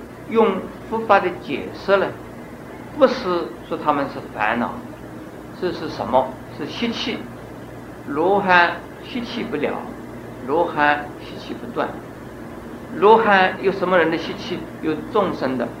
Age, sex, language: 50-69, male, Chinese